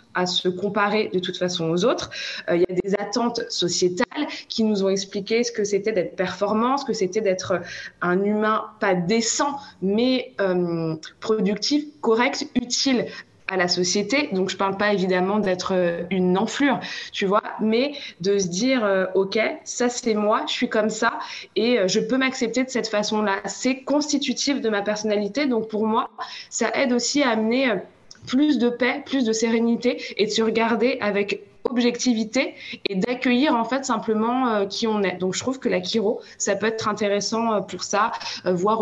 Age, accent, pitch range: 20-39, French, 195-240 Hz